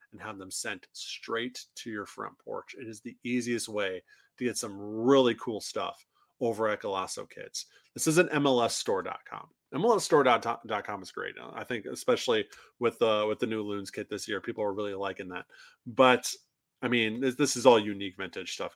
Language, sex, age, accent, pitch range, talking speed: English, male, 30-49, American, 105-140 Hz, 195 wpm